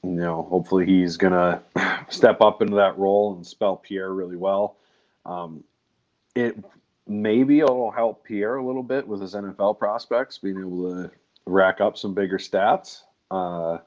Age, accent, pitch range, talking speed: 40-59, American, 90-105 Hz, 165 wpm